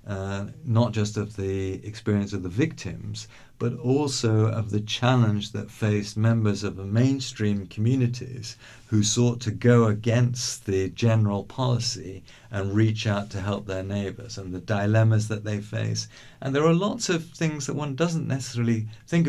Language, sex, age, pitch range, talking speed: English, male, 50-69, 100-125 Hz, 165 wpm